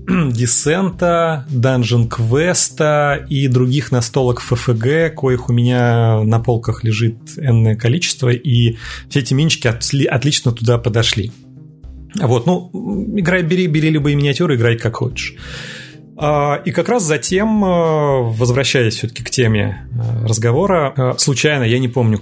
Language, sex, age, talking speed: Russian, male, 30-49, 120 wpm